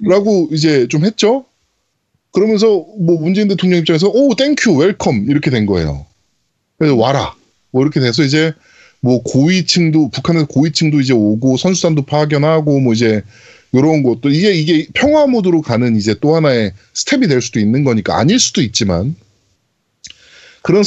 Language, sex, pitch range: Korean, male, 120-205 Hz